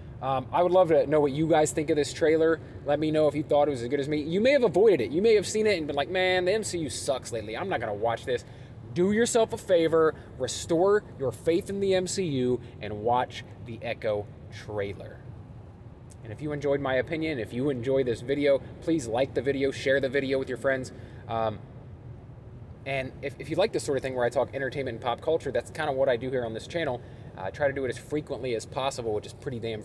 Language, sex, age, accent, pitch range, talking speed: English, male, 20-39, American, 115-150 Hz, 250 wpm